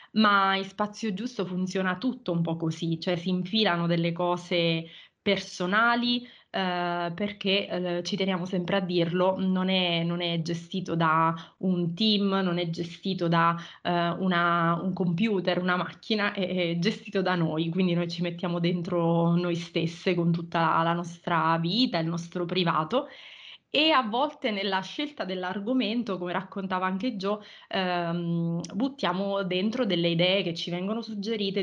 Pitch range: 170-195 Hz